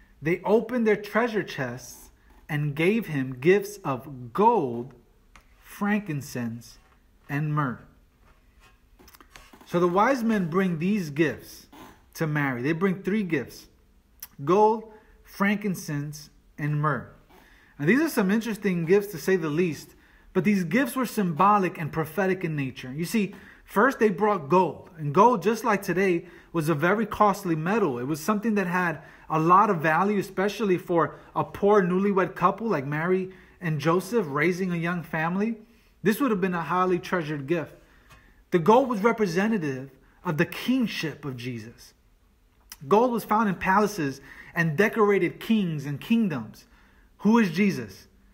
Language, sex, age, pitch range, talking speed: English, male, 30-49, 150-210 Hz, 150 wpm